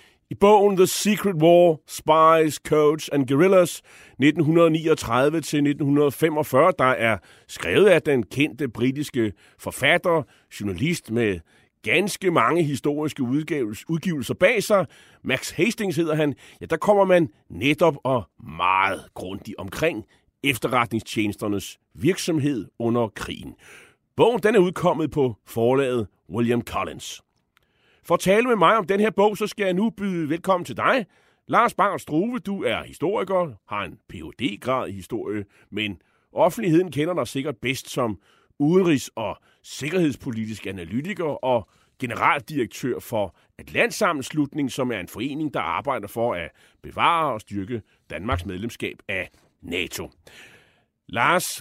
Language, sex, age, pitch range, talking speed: Danish, male, 30-49, 115-175 Hz, 130 wpm